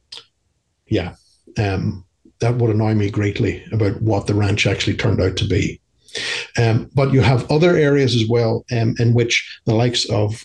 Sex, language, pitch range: male, English, 110-130 Hz